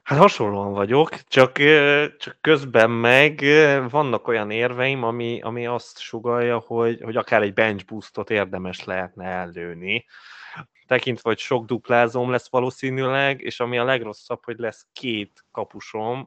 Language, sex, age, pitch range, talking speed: Hungarian, male, 20-39, 105-125 Hz, 135 wpm